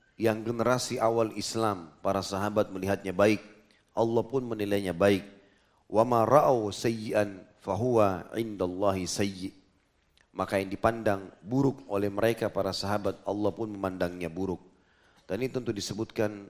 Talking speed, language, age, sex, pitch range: 125 wpm, Indonesian, 30-49, male, 90-110 Hz